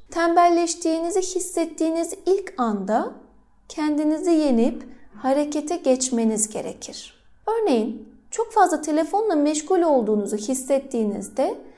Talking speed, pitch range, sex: 80 wpm, 245-335 Hz, female